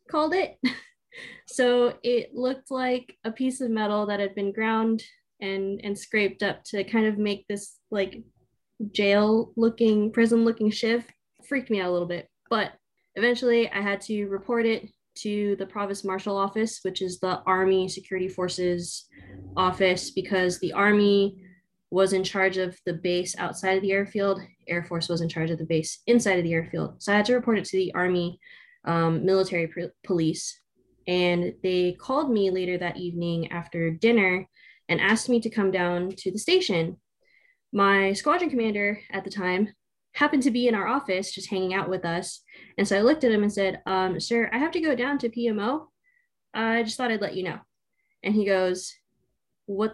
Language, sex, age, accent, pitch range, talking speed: English, female, 10-29, American, 185-230 Hz, 185 wpm